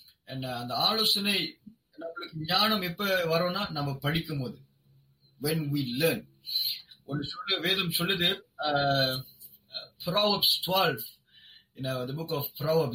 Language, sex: Tamil, male